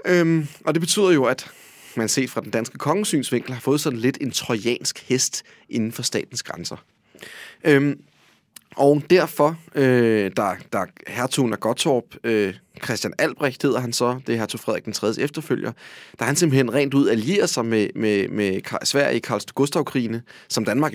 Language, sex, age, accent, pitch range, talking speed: Danish, male, 30-49, native, 115-150 Hz, 170 wpm